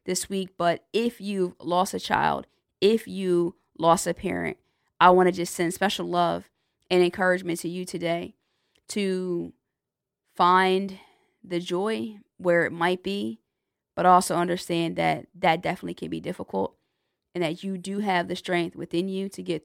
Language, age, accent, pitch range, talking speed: English, 20-39, American, 170-185 Hz, 165 wpm